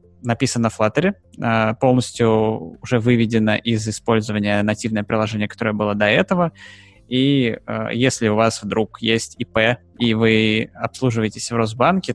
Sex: male